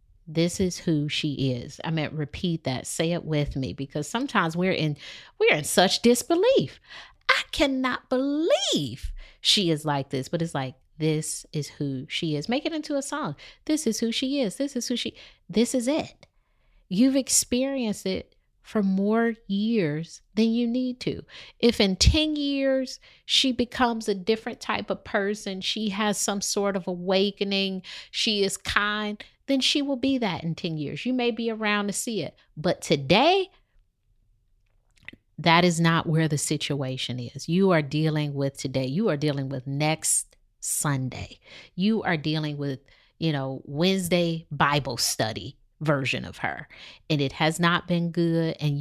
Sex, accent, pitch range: female, American, 145-225 Hz